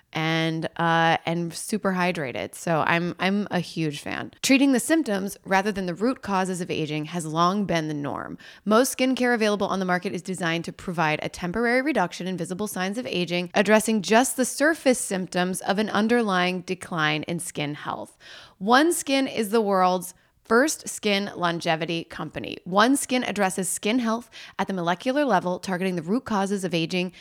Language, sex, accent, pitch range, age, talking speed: English, female, American, 170-225 Hz, 20-39, 175 wpm